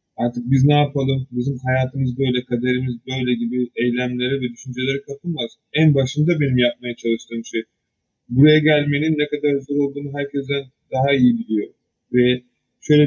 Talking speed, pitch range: 145 wpm, 125-150 Hz